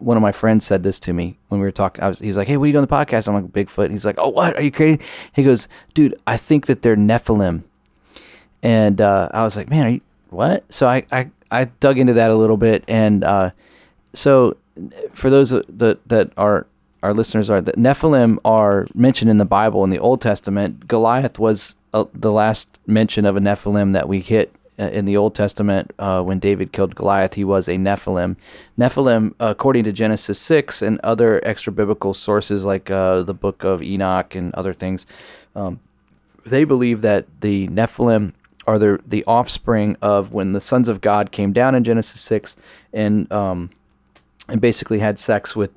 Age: 30-49